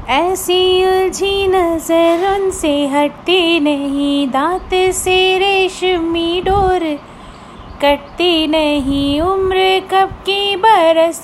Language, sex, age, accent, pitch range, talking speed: Hindi, female, 30-49, native, 285-385 Hz, 85 wpm